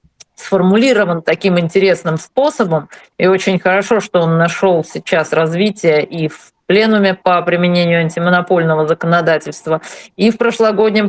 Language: Russian